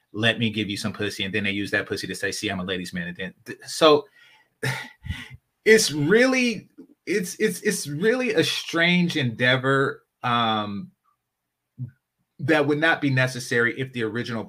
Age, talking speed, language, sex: 30-49, 170 wpm, English, male